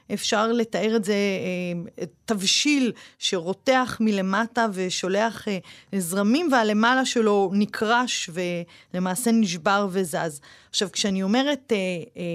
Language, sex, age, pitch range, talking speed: Hebrew, female, 30-49, 195-255 Hz, 95 wpm